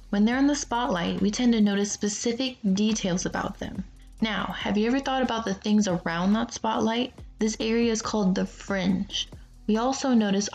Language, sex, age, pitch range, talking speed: English, female, 20-39, 195-235 Hz, 190 wpm